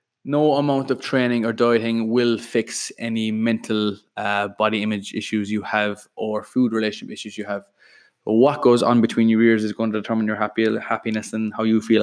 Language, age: English, 20-39